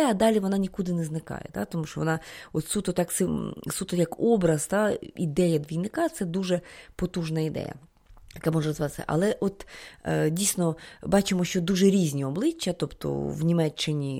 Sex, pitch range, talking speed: female, 155-185 Hz, 150 wpm